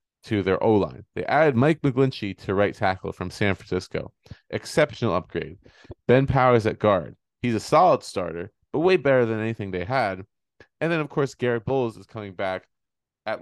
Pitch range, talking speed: 100-135 Hz, 180 wpm